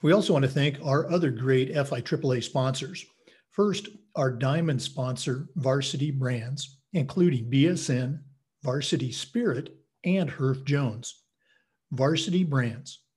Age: 50-69